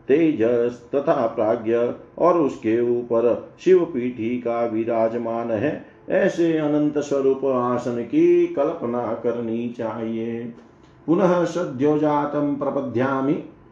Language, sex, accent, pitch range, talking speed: Hindi, male, native, 120-150 Hz, 90 wpm